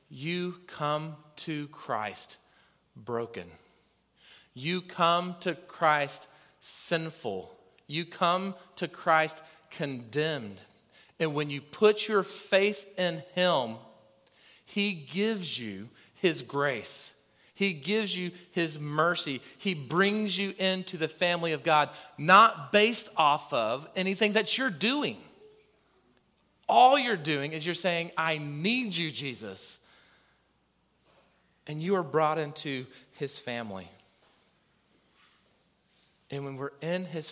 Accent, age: American, 40-59